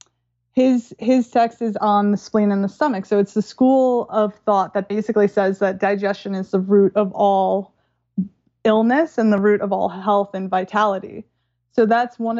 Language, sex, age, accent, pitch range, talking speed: English, female, 20-39, American, 200-225 Hz, 185 wpm